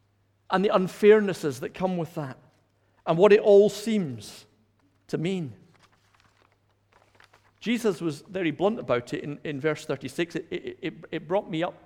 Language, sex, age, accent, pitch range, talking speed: English, male, 50-69, British, 100-170 Hz, 155 wpm